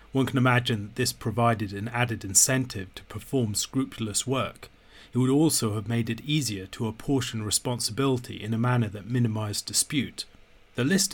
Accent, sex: British, male